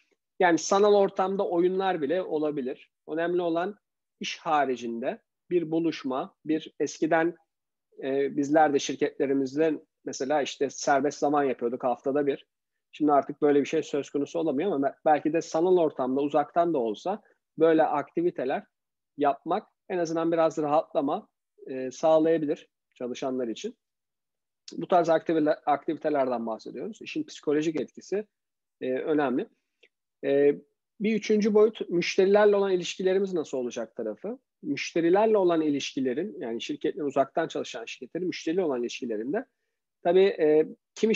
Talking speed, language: 120 wpm, Turkish